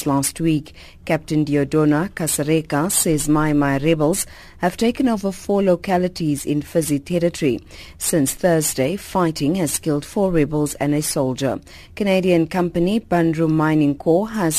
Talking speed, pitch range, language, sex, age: 135 wpm, 145-175 Hz, English, female, 50-69